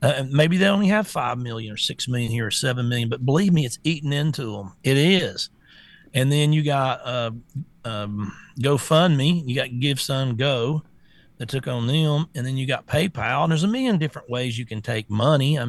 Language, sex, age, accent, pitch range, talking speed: English, male, 40-59, American, 125-165 Hz, 210 wpm